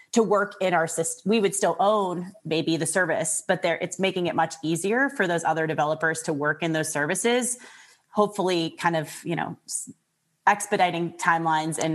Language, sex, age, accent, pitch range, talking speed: English, female, 30-49, American, 155-190 Hz, 180 wpm